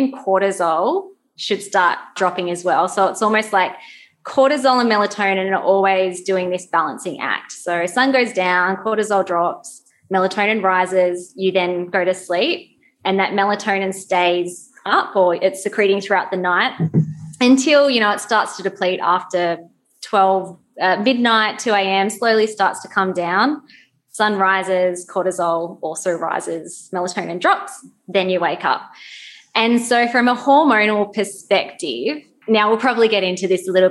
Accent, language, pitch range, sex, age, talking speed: Australian, English, 180-215 Hz, female, 20-39, 150 wpm